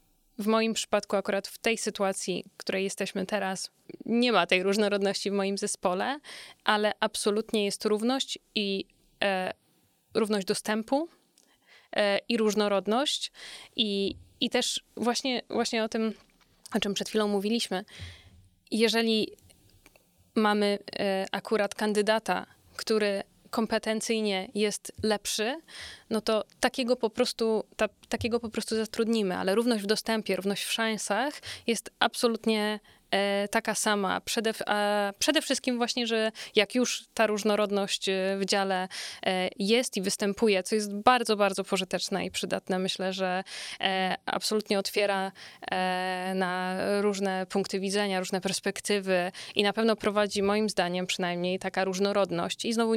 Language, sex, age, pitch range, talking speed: Polish, female, 20-39, 195-225 Hz, 125 wpm